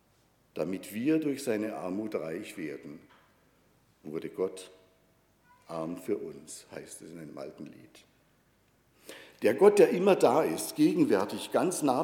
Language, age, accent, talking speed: German, 60-79, German, 135 wpm